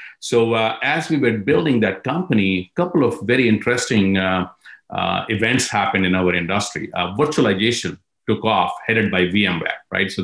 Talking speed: 170 wpm